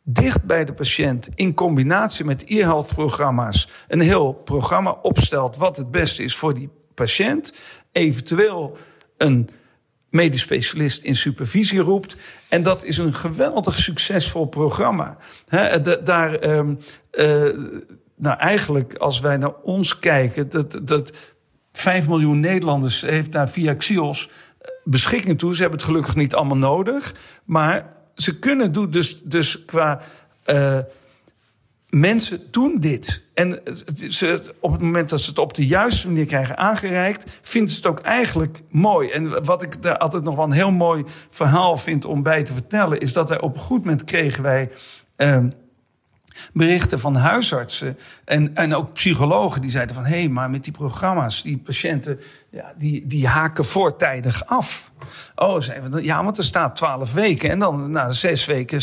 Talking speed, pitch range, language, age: 160 wpm, 140-175 Hz, Dutch, 50-69